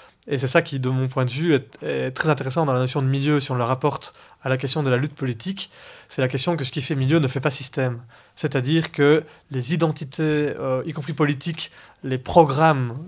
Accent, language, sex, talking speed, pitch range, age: French, French, male, 235 wpm, 130-150 Hz, 20-39